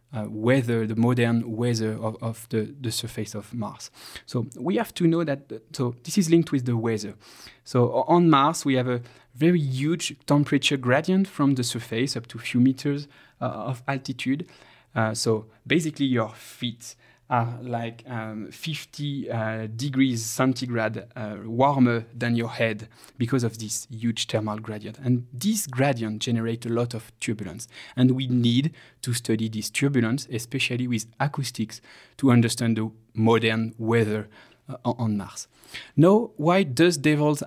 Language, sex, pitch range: English, male, 115-140 Hz